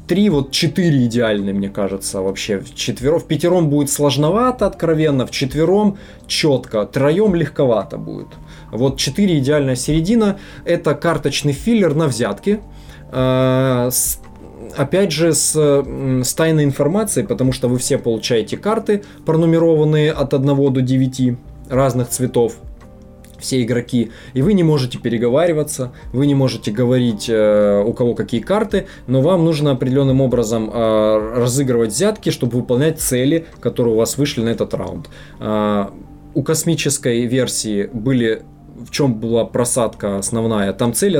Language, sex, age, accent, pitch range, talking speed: Russian, male, 20-39, native, 115-155 Hz, 140 wpm